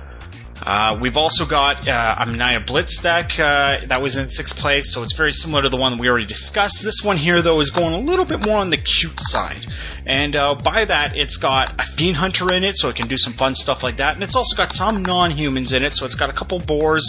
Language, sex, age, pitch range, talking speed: English, male, 30-49, 115-165 Hz, 255 wpm